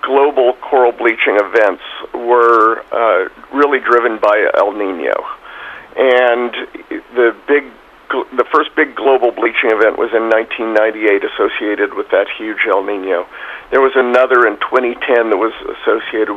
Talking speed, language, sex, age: 140 wpm, English, male, 50-69